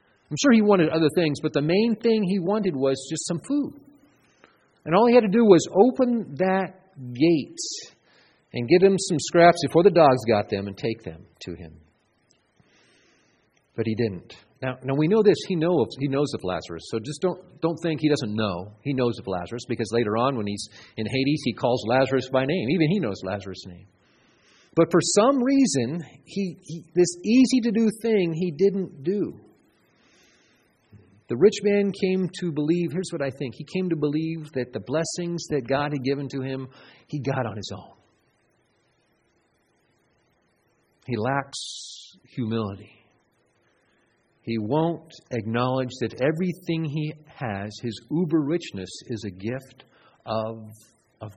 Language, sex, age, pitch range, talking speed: English, male, 40-59, 115-175 Hz, 165 wpm